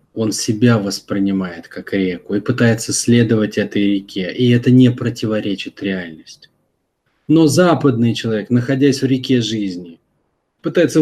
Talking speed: 125 wpm